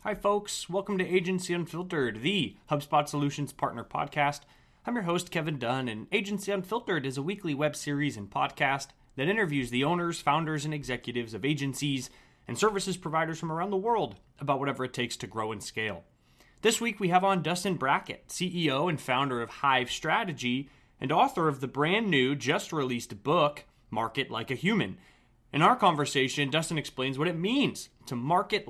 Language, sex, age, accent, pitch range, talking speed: English, male, 30-49, American, 130-180 Hz, 180 wpm